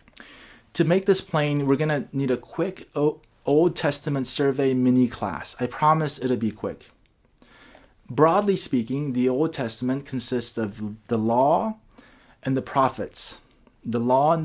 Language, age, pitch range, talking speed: English, 30-49, 120-160 Hz, 140 wpm